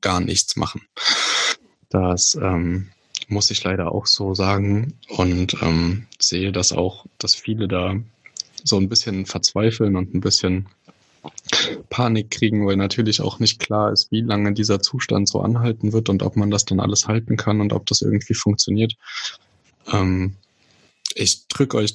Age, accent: 10-29, German